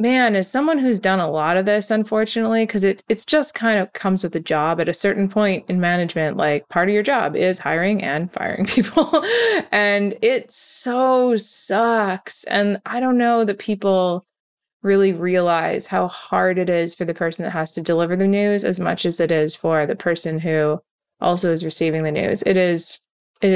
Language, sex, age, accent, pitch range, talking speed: English, female, 20-39, American, 170-215 Hz, 200 wpm